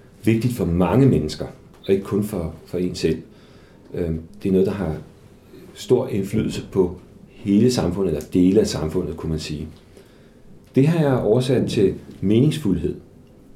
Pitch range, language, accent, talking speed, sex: 90-130 Hz, Danish, native, 150 wpm, male